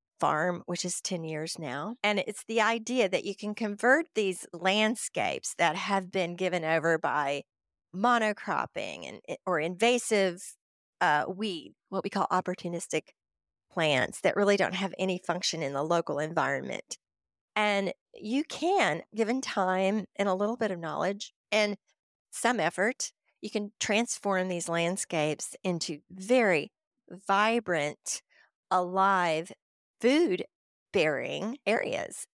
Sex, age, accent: female, 50-69, American